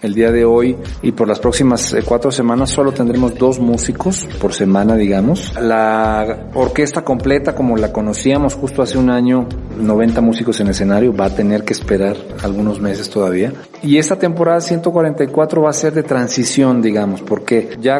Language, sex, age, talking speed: Spanish, male, 40-59, 170 wpm